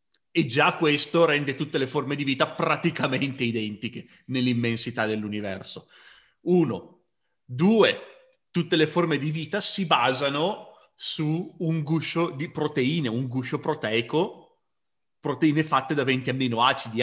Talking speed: 125 wpm